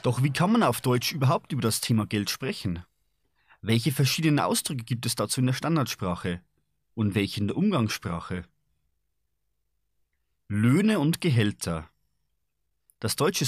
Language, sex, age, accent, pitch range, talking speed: Czech, male, 30-49, German, 90-145 Hz, 140 wpm